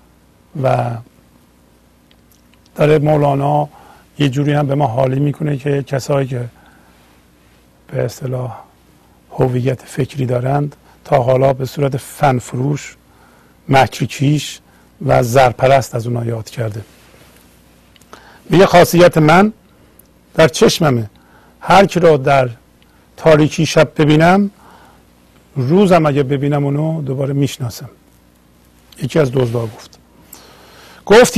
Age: 50-69